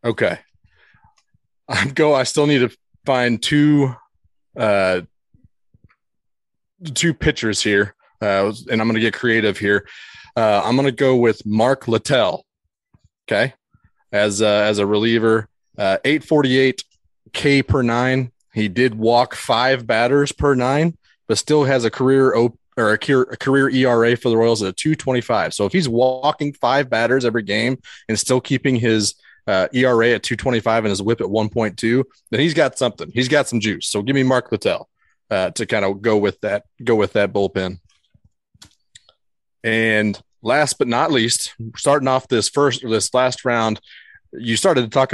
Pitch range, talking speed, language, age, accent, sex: 105-130 Hz, 170 wpm, English, 30-49, American, male